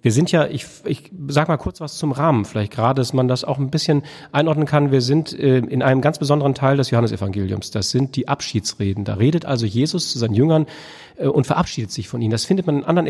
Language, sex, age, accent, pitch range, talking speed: German, male, 40-59, German, 120-155 Hz, 235 wpm